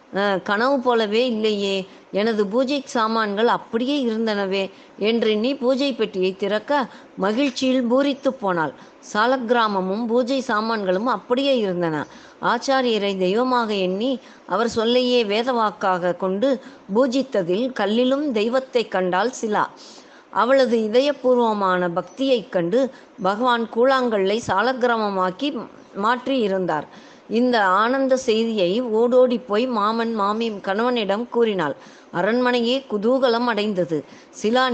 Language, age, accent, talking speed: Tamil, 20-39, native, 95 wpm